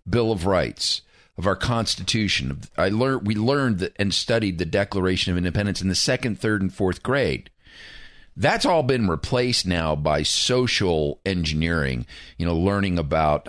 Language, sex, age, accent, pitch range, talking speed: English, male, 40-59, American, 85-110 Hz, 155 wpm